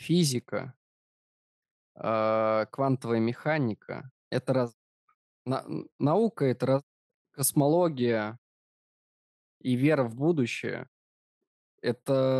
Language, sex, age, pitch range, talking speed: Russian, male, 20-39, 110-130 Hz, 70 wpm